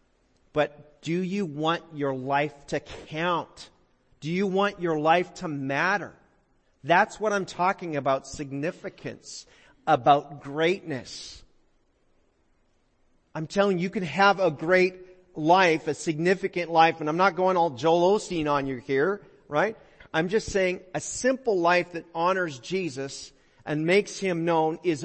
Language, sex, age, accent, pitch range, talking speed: English, male, 40-59, American, 145-185 Hz, 145 wpm